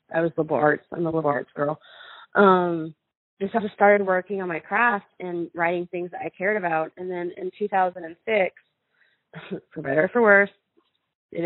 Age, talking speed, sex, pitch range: 20-39, 185 wpm, female, 170-210 Hz